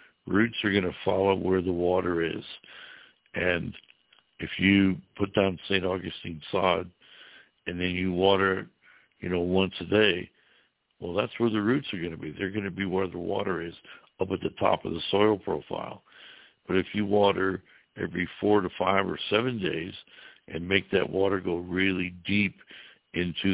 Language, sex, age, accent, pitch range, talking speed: English, male, 60-79, American, 85-100 Hz, 180 wpm